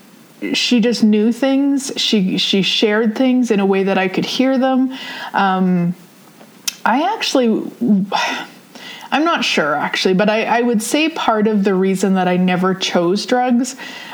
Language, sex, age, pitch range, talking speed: English, female, 30-49, 185-235 Hz, 155 wpm